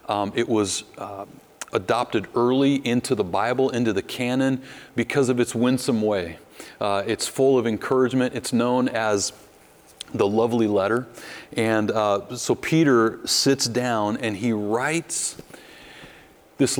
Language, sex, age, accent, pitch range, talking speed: English, male, 30-49, American, 105-130 Hz, 135 wpm